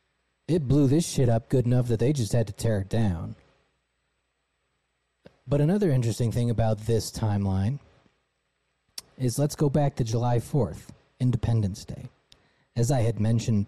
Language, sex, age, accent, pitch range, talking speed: English, male, 30-49, American, 95-135 Hz, 155 wpm